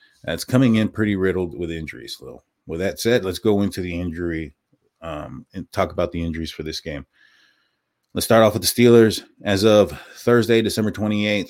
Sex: male